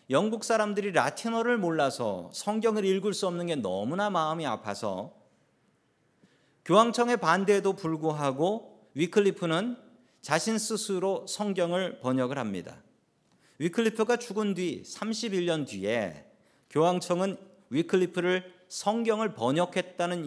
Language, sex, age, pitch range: Korean, male, 40-59, 150-215 Hz